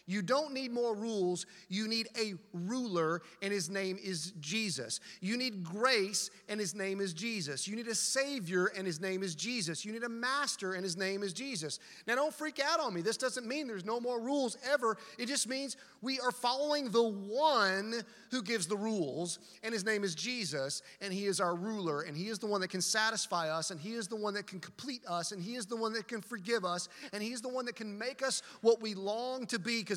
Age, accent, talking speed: 30-49, American, 230 wpm